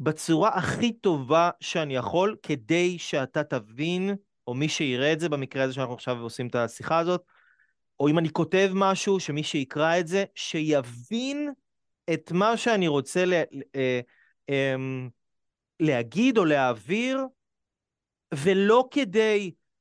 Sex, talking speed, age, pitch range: male, 125 wpm, 30-49, 140-185 Hz